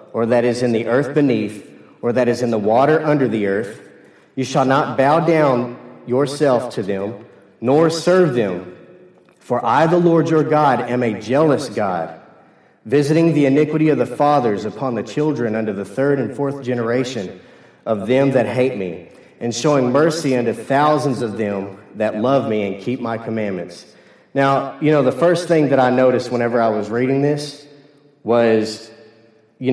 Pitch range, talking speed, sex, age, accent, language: 115-145 Hz, 175 wpm, male, 40-59, American, English